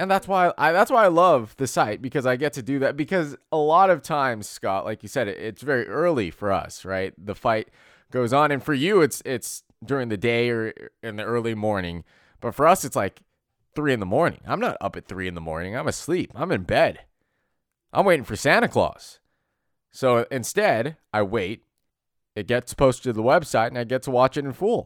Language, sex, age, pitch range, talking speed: English, male, 20-39, 110-150 Hz, 230 wpm